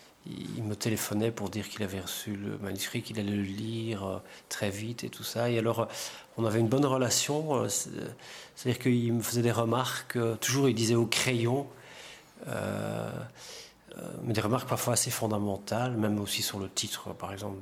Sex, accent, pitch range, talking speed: male, French, 105-125 Hz, 175 wpm